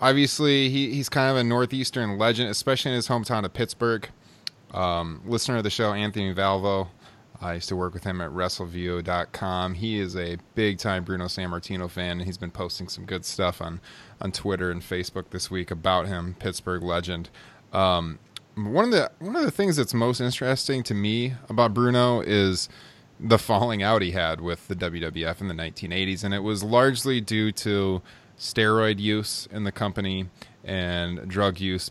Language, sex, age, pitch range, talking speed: English, male, 20-39, 90-120 Hz, 180 wpm